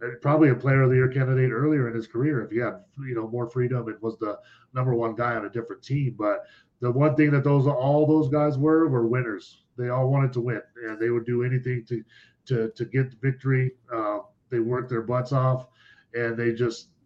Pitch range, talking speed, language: 115-135 Hz, 230 wpm, English